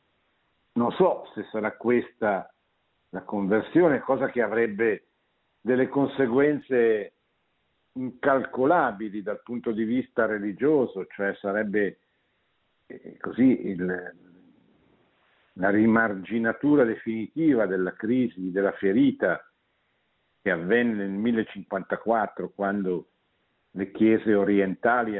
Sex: male